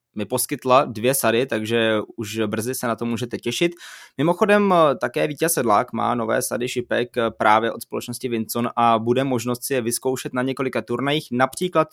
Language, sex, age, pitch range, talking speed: Czech, male, 20-39, 120-145 Hz, 170 wpm